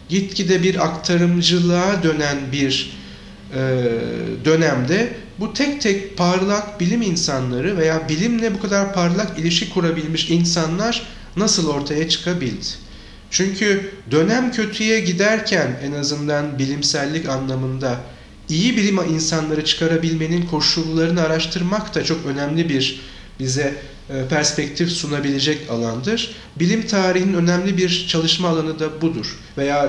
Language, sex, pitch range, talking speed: Turkish, male, 140-180 Hz, 110 wpm